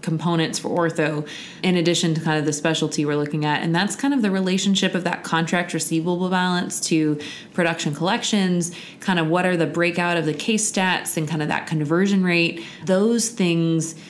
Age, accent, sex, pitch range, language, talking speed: 20-39, American, female, 155-180 Hz, English, 190 wpm